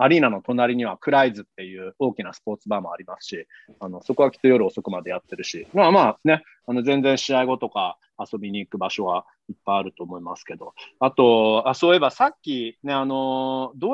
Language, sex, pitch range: Japanese, male, 120-195 Hz